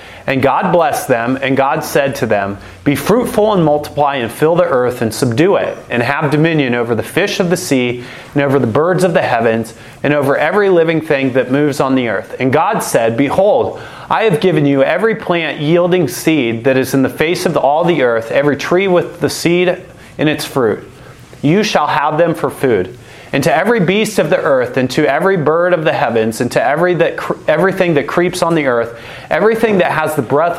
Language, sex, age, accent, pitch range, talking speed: English, male, 30-49, American, 125-175 Hz, 220 wpm